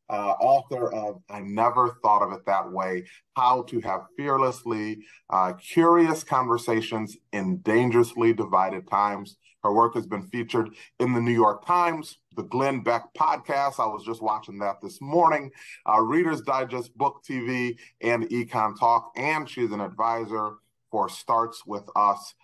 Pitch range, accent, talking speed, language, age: 105-130 Hz, American, 155 wpm, English, 30-49